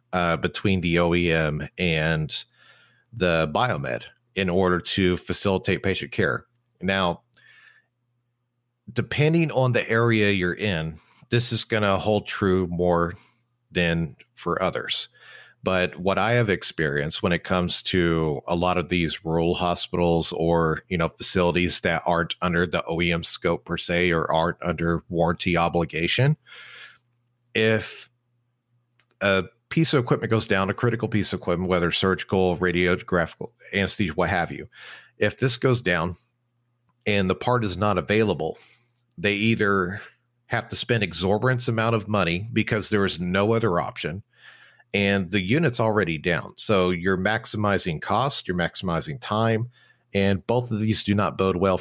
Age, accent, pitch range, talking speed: 40-59, American, 90-115 Hz, 145 wpm